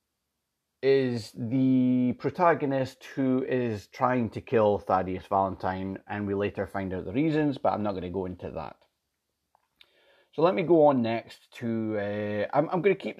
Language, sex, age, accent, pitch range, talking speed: English, male, 30-49, British, 105-140 Hz, 175 wpm